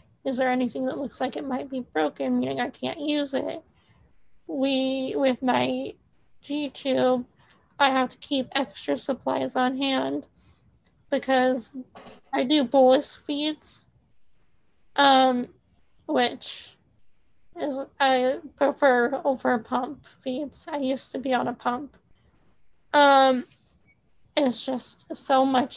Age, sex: 20-39, female